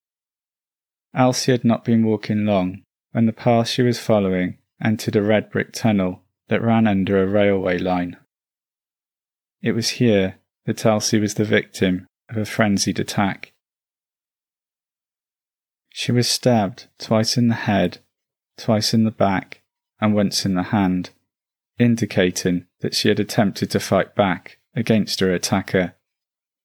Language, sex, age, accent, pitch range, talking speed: English, male, 20-39, British, 95-115 Hz, 140 wpm